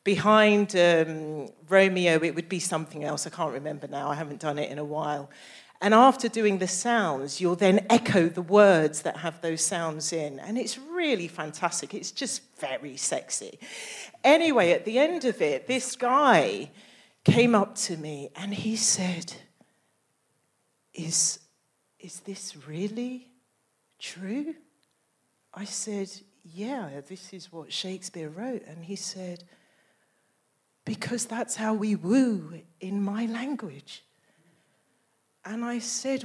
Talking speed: 140 wpm